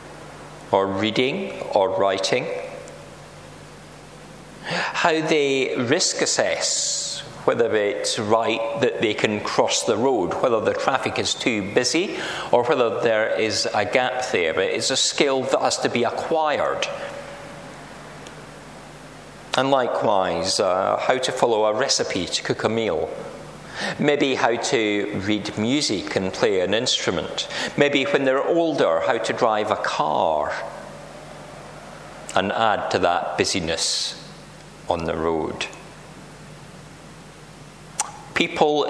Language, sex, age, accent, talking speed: English, male, 40-59, British, 120 wpm